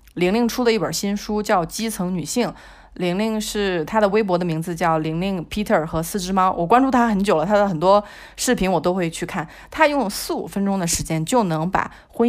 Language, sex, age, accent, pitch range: Chinese, female, 20-39, native, 175-230 Hz